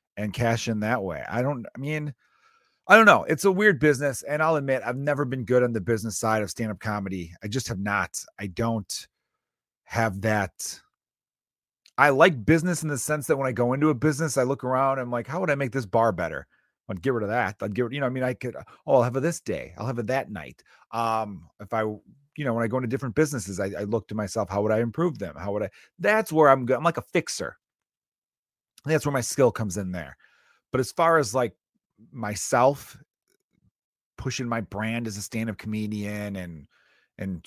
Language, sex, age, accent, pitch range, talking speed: English, male, 30-49, American, 105-135 Hz, 225 wpm